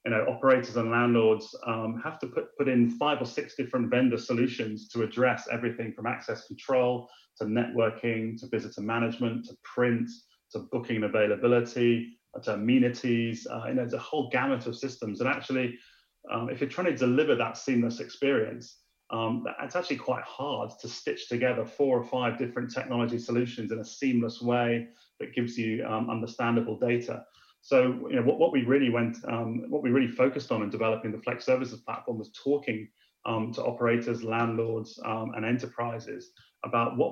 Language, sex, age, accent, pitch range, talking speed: English, male, 30-49, British, 115-130 Hz, 180 wpm